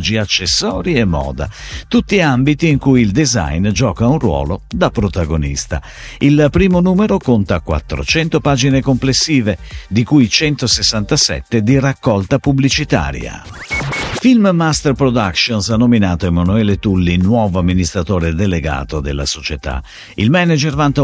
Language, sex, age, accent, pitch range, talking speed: Italian, male, 50-69, native, 85-140 Hz, 115 wpm